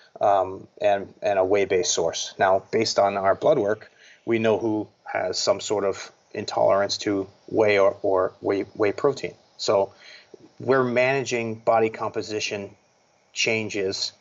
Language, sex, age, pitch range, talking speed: English, male, 30-49, 100-130 Hz, 140 wpm